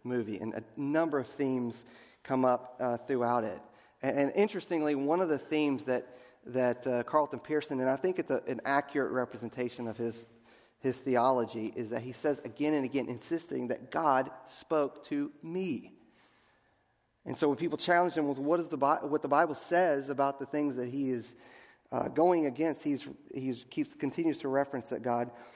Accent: American